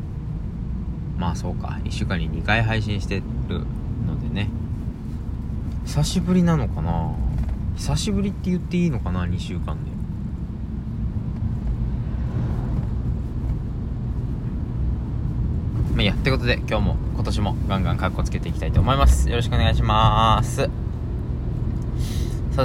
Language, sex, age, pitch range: Japanese, male, 20-39, 90-120 Hz